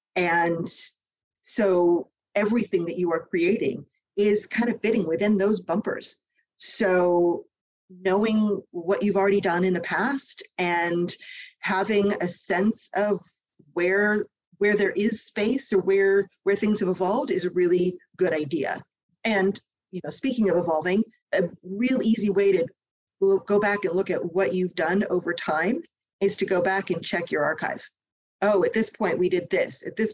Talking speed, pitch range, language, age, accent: 165 wpm, 175-210 Hz, English, 40-59, American